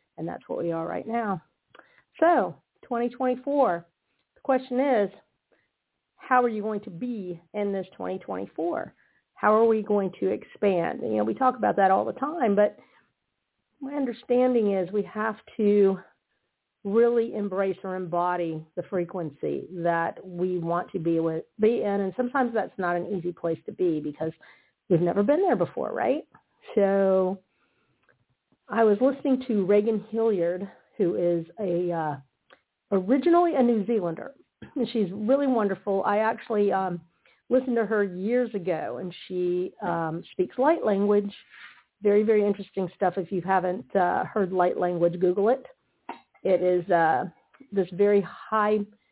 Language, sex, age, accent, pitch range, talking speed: English, female, 50-69, American, 180-225 Hz, 150 wpm